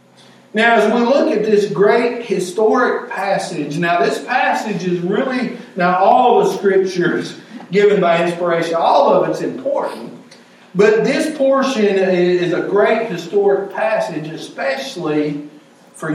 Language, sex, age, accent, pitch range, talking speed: English, male, 50-69, American, 175-210 Hz, 130 wpm